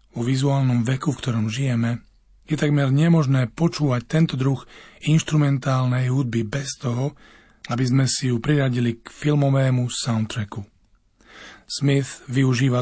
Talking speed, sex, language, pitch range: 120 wpm, male, Slovak, 115-140 Hz